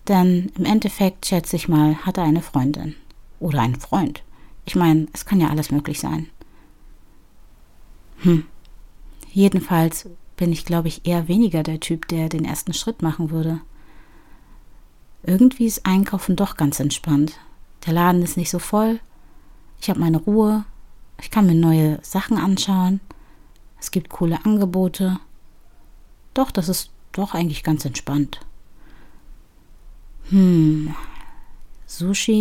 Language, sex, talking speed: German, female, 135 wpm